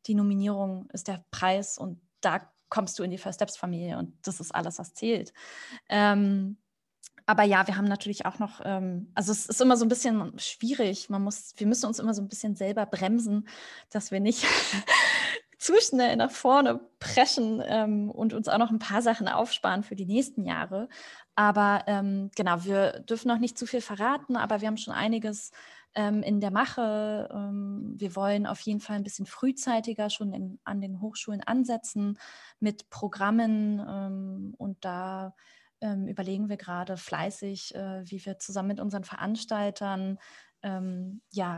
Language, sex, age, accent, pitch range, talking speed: German, female, 20-39, German, 195-230 Hz, 165 wpm